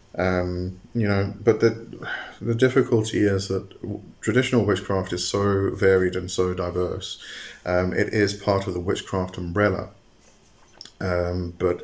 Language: English